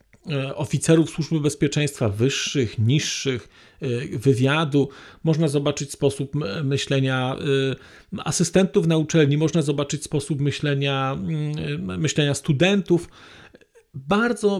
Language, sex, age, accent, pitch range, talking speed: Polish, male, 40-59, native, 155-185 Hz, 80 wpm